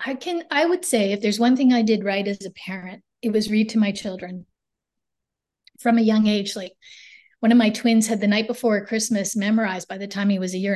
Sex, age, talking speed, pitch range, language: female, 30-49, 240 wpm, 205-245 Hz, English